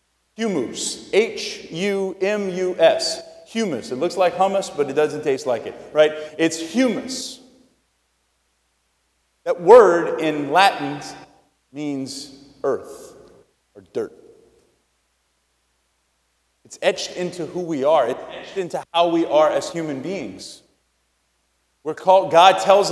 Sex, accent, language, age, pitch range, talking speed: male, American, English, 30-49, 155-230 Hz, 115 wpm